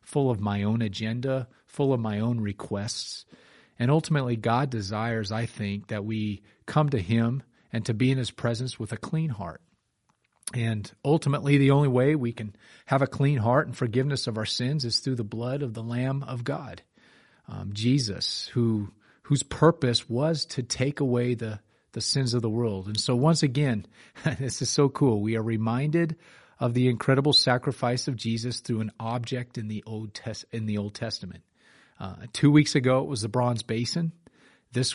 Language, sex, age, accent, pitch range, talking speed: English, male, 40-59, American, 110-135 Hz, 185 wpm